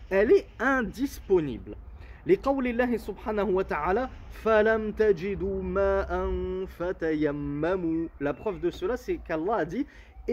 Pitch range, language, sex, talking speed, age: 175-235 Hz, French, male, 100 wpm, 30-49